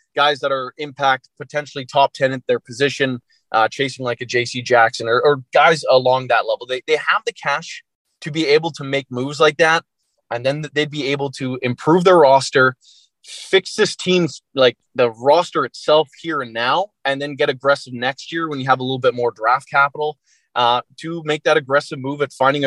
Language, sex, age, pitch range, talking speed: English, male, 20-39, 125-155 Hz, 205 wpm